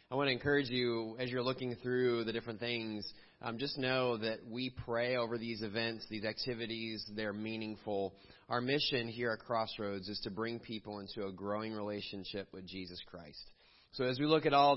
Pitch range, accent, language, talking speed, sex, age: 105-130 Hz, American, English, 190 wpm, male, 30-49